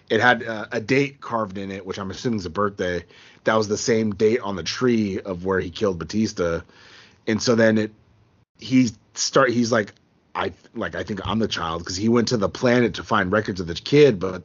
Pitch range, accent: 90-115 Hz, American